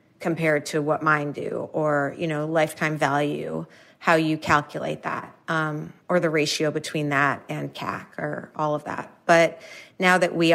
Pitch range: 150-165 Hz